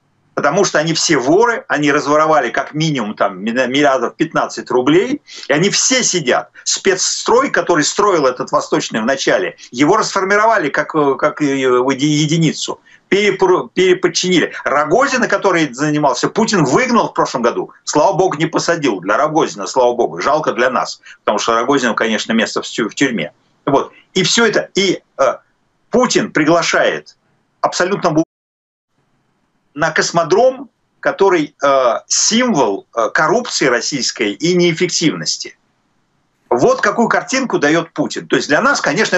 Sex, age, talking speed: male, 50-69, 125 wpm